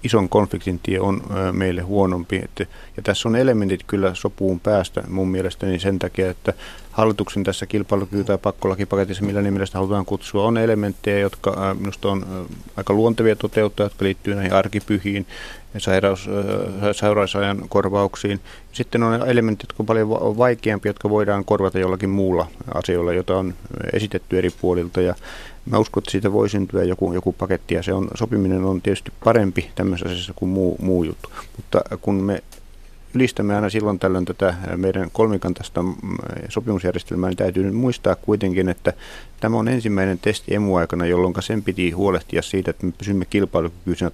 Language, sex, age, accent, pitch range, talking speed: Finnish, male, 30-49, native, 90-105 Hz, 165 wpm